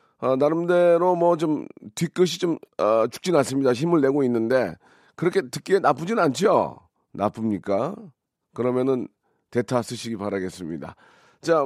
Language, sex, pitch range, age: Korean, male, 115-150 Hz, 40-59